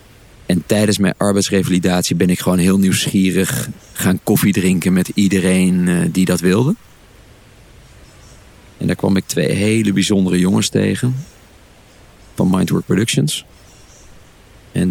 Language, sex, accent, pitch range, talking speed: Dutch, male, Dutch, 95-110 Hz, 120 wpm